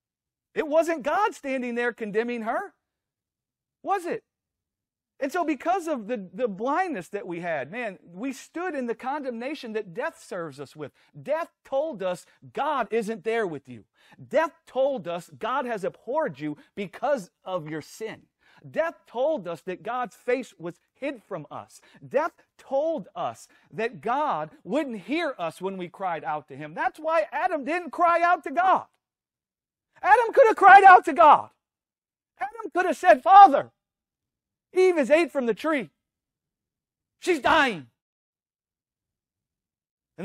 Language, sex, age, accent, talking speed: English, male, 40-59, American, 150 wpm